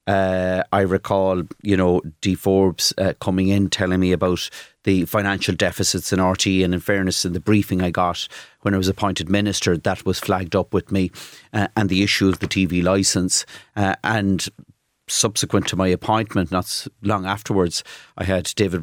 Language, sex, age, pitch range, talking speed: English, male, 30-49, 95-105 Hz, 180 wpm